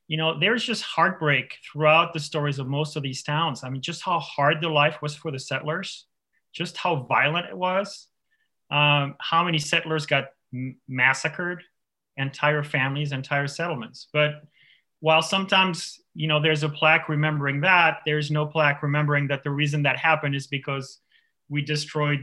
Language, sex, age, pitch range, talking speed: English, male, 30-49, 135-160 Hz, 165 wpm